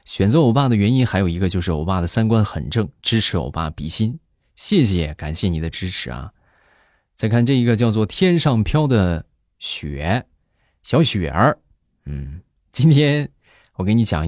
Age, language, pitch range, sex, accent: 20-39, Chinese, 85-120 Hz, male, native